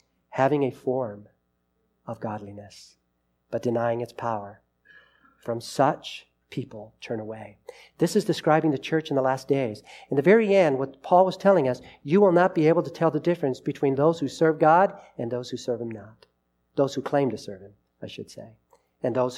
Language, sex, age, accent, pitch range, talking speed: English, male, 40-59, American, 125-205 Hz, 195 wpm